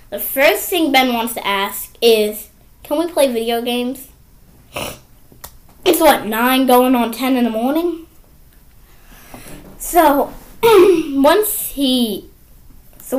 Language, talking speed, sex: English, 105 wpm, female